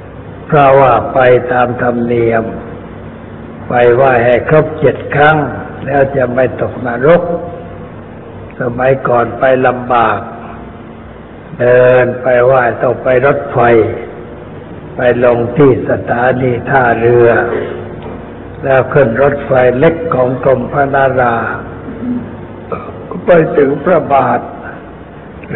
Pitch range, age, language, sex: 120-135 Hz, 60-79, Thai, male